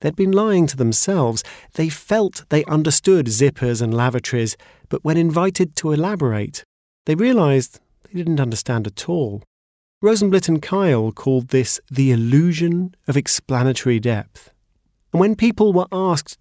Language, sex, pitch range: English, male, 115-165 Hz